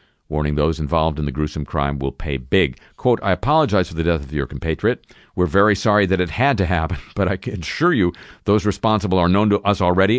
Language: English